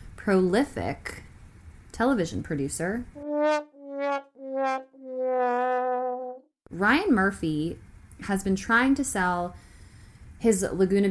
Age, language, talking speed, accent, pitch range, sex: 10-29, English, 65 wpm, American, 160-215 Hz, female